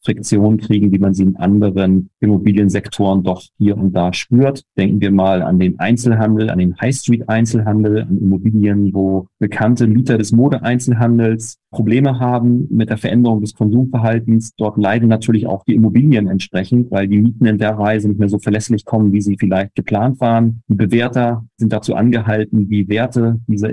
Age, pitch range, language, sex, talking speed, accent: 40-59, 105-120 Hz, German, male, 165 wpm, German